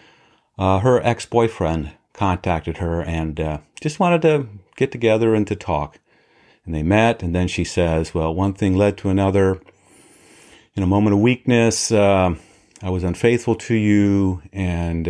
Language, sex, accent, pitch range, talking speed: English, male, American, 90-115 Hz, 160 wpm